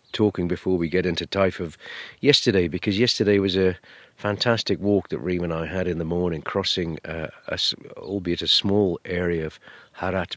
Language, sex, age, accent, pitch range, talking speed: English, male, 40-59, British, 80-95 Hz, 175 wpm